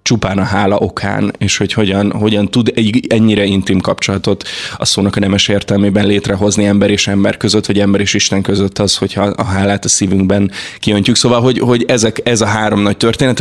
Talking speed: 195 wpm